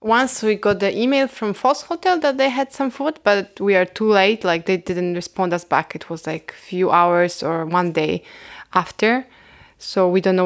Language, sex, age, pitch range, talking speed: English, female, 20-39, 180-215 Hz, 220 wpm